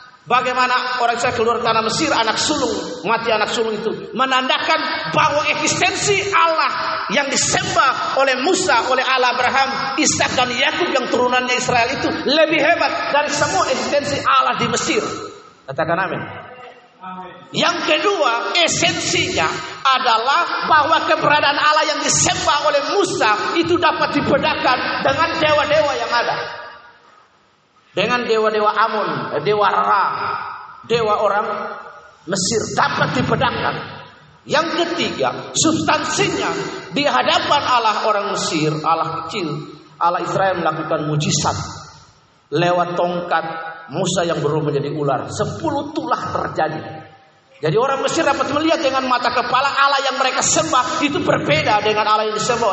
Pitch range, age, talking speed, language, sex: 210-305 Hz, 40-59, 125 wpm, Indonesian, male